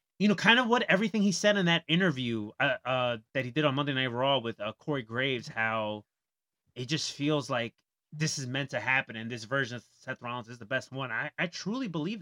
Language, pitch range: English, 125-170 Hz